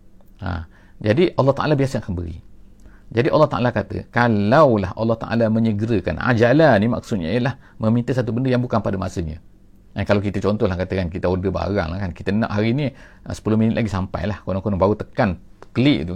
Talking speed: 180 wpm